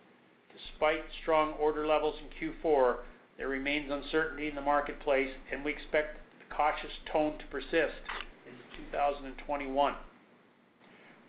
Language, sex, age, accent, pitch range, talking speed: English, male, 50-69, American, 140-155 Hz, 115 wpm